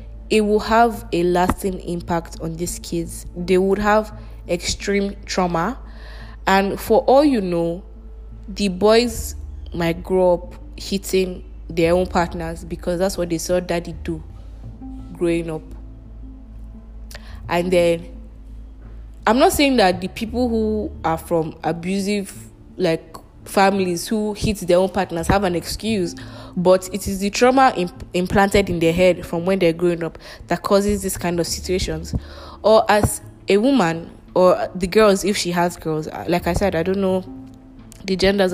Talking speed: 155 wpm